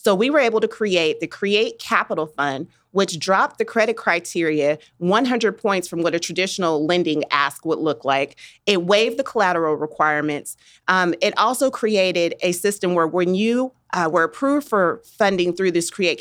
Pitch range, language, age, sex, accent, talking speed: 160-200 Hz, English, 30-49, female, American, 180 wpm